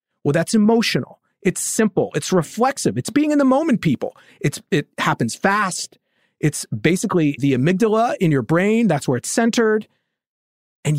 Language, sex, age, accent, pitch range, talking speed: English, male, 40-59, American, 130-195 Hz, 160 wpm